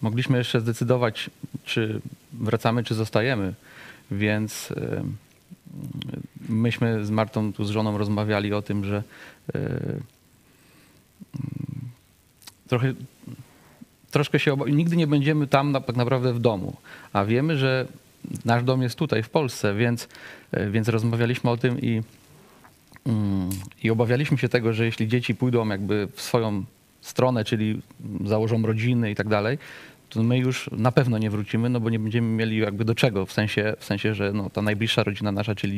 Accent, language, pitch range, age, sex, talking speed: native, Polish, 105-130 Hz, 40-59, male, 150 wpm